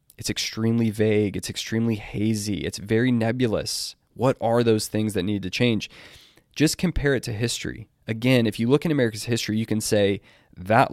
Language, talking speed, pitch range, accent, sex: English, 180 wpm, 105-130 Hz, American, male